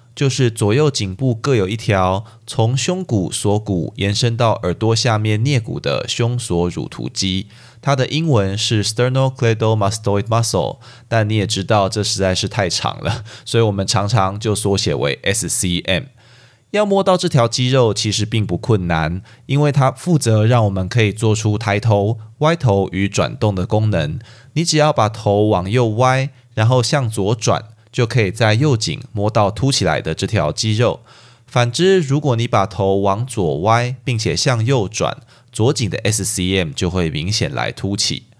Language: Chinese